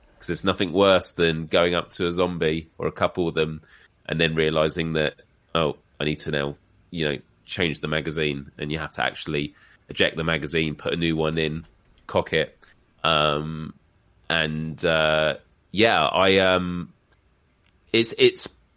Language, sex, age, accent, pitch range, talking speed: English, male, 30-49, British, 80-100 Hz, 165 wpm